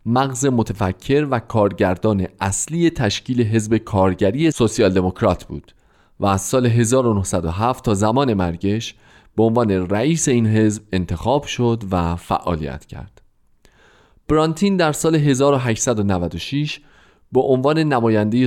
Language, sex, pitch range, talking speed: Persian, male, 95-135 Hz, 110 wpm